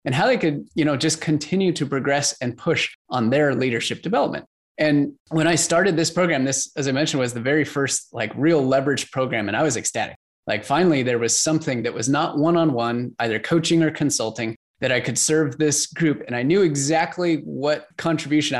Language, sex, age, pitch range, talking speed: English, male, 20-39, 130-165 Hz, 205 wpm